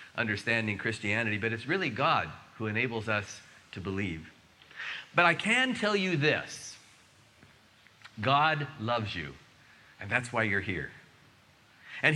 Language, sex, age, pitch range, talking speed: English, male, 40-59, 115-180 Hz, 130 wpm